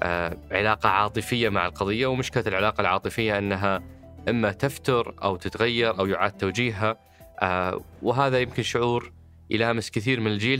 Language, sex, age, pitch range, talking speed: Arabic, male, 20-39, 100-120 Hz, 125 wpm